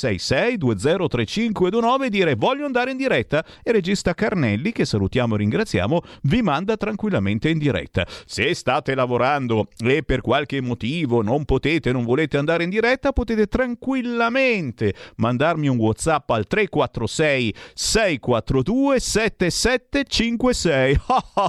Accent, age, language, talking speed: native, 50-69, Italian, 115 wpm